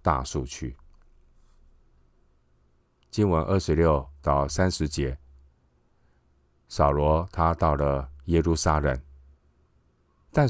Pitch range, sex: 65-80 Hz, male